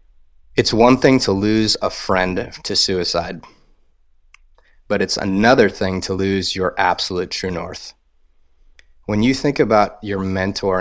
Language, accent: English, American